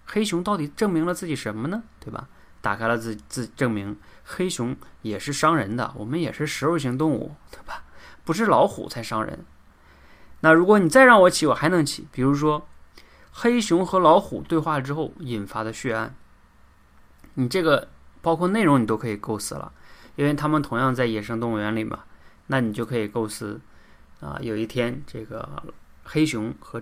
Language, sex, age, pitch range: Chinese, male, 20-39, 105-155 Hz